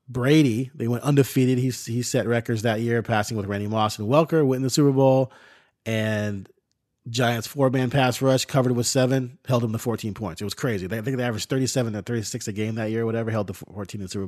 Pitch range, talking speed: 115-165 Hz, 235 wpm